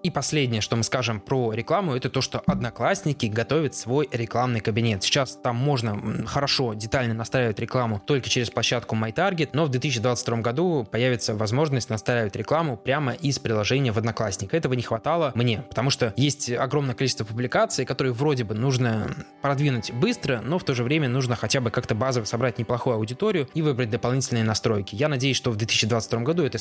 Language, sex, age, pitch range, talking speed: Russian, male, 20-39, 115-140 Hz, 180 wpm